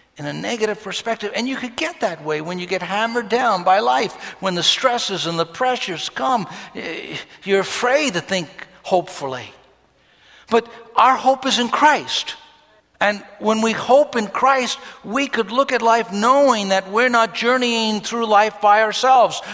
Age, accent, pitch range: 60-79, American, 185-255 Hz